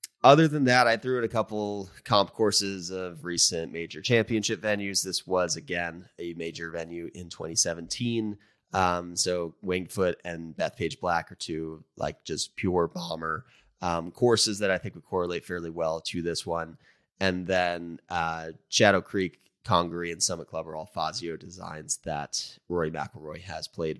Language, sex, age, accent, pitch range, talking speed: English, male, 30-49, American, 85-105 Hz, 165 wpm